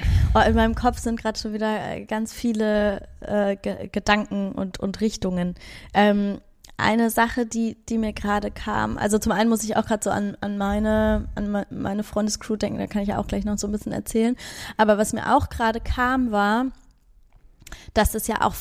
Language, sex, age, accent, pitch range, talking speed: German, female, 20-39, German, 195-225 Hz, 185 wpm